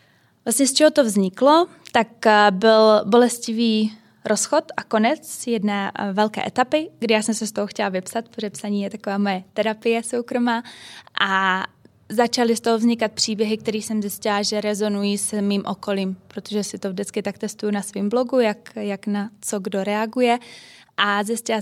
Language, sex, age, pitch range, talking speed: Czech, female, 20-39, 200-230 Hz, 165 wpm